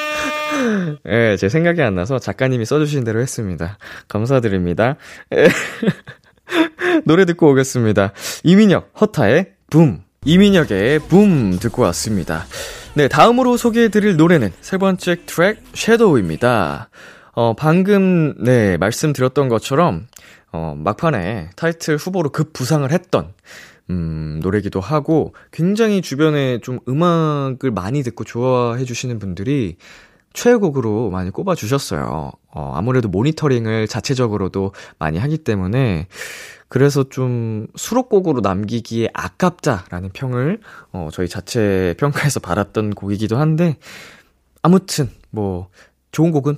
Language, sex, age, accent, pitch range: Korean, male, 20-39, native, 100-160 Hz